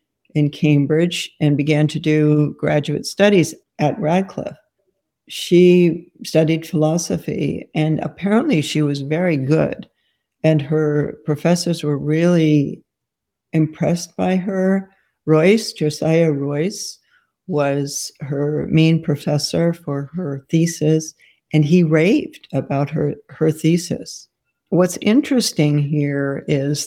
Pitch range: 150-180 Hz